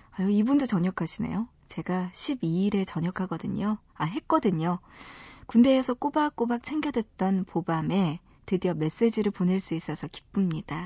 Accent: native